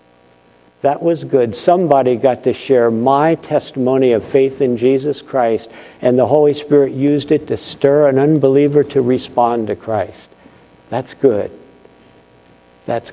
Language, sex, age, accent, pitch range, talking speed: English, male, 50-69, American, 120-175 Hz, 140 wpm